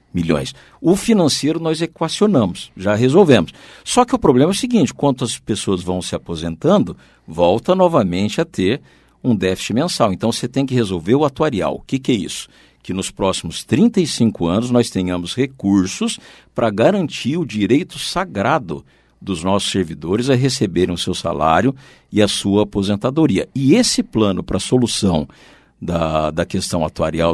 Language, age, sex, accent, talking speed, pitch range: Portuguese, 60-79, male, Brazilian, 160 wpm, 95-145 Hz